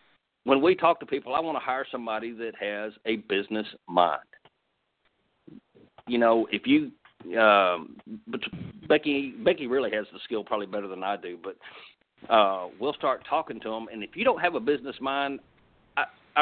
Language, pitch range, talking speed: English, 110-145 Hz, 175 wpm